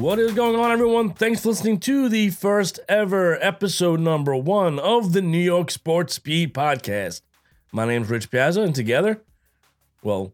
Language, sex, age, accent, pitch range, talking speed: English, male, 30-49, American, 125-175 Hz, 175 wpm